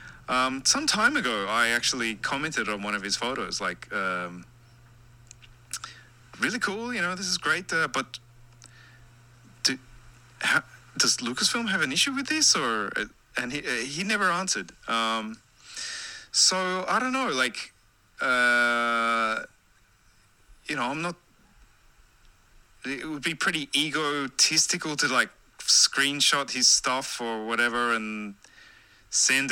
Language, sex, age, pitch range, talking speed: English, male, 20-39, 115-135 Hz, 130 wpm